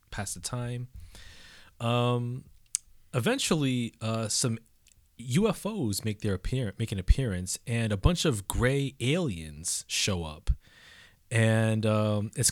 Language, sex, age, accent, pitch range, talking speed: English, male, 20-39, American, 95-120 Hz, 120 wpm